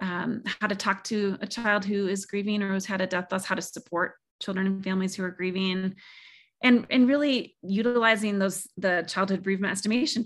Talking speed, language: 200 wpm, English